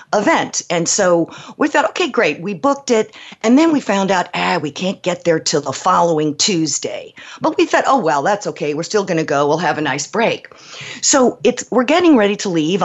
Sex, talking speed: female, 225 wpm